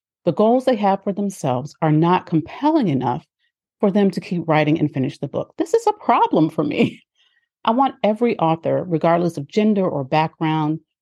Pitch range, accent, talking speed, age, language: 155-215 Hz, American, 185 wpm, 40-59, English